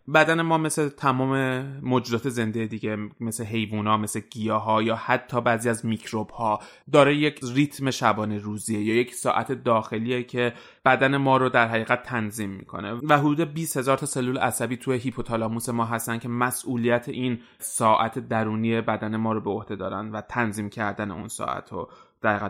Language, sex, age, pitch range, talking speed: Persian, male, 20-39, 110-125 Hz, 170 wpm